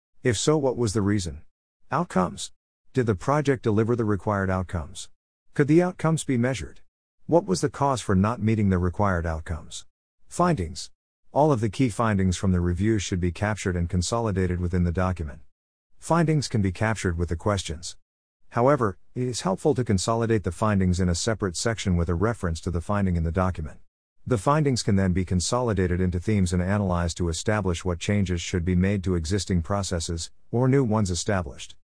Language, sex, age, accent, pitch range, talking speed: English, male, 50-69, American, 90-115 Hz, 185 wpm